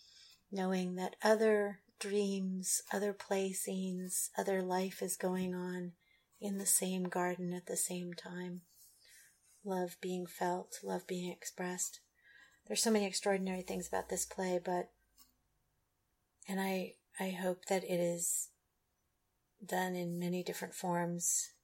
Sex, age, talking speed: female, 40-59, 130 wpm